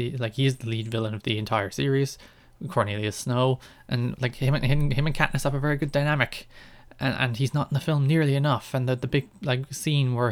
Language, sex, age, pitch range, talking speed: English, male, 20-39, 115-140 Hz, 240 wpm